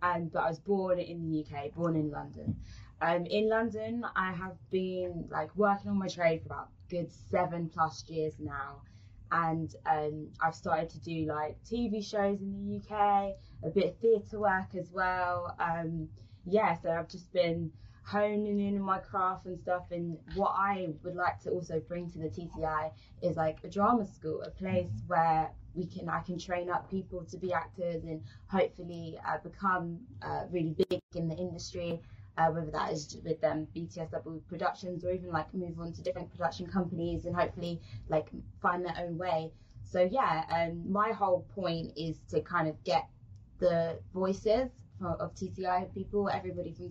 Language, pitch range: English, 155-185 Hz